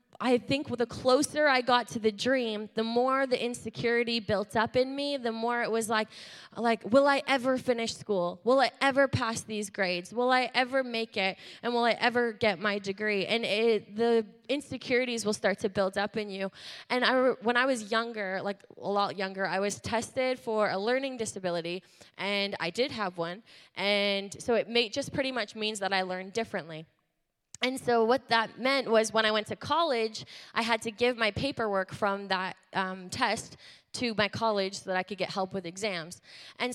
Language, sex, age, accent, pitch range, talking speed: English, female, 20-39, American, 200-240 Hz, 200 wpm